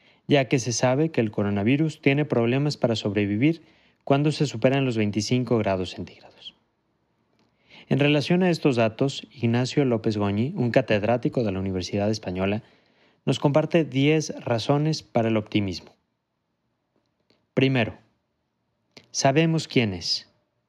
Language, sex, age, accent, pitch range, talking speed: Spanish, male, 30-49, Mexican, 110-145 Hz, 125 wpm